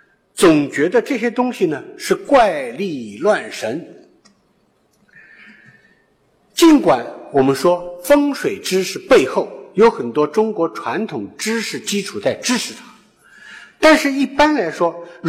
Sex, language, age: male, Chinese, 50-69